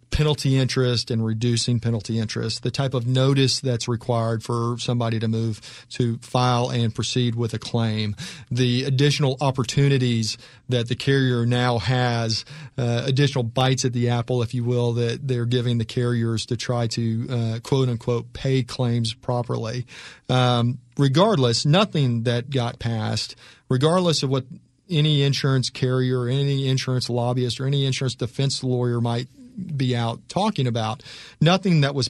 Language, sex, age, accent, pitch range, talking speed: English, male, 40-59, American, 120-135 Hz, 150 wpm